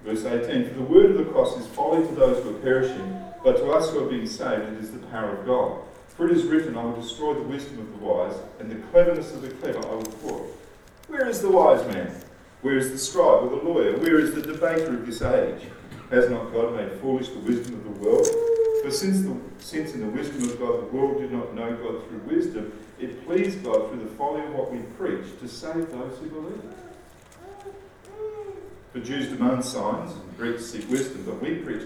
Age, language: 40-59, English